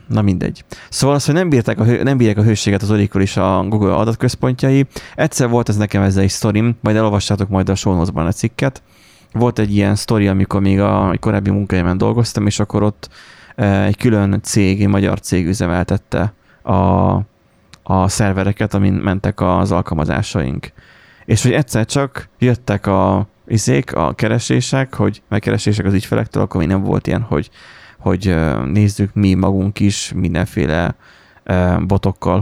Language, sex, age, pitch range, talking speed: Hungarian, male, 20-39, 95-115 Hz, 155 wpm